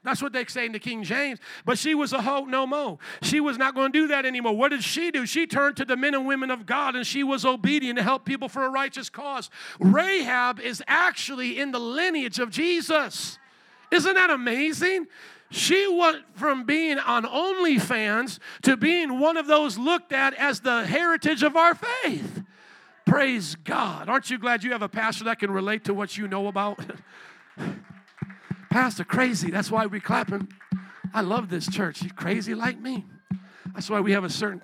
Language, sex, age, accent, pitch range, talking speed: English, male, 50-69, American, 190-265 Hz, 195 wpm